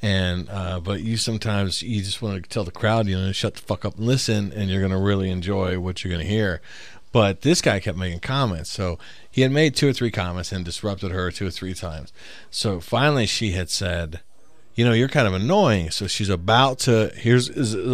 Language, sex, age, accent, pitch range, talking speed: English, male, 40-59, American, 95-120 Hz, 230 wpm